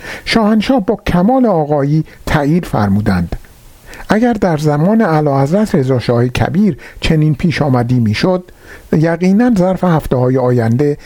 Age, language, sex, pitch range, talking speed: 50-69, Persian, male, 125-200 Hz, 110 wpm